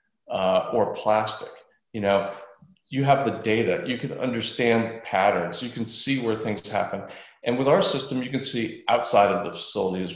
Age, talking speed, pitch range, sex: 40-59, 185 wpm, 100-145 Hz, male